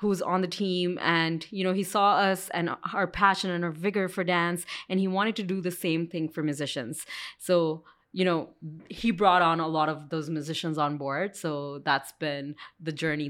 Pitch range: 160-200 Hz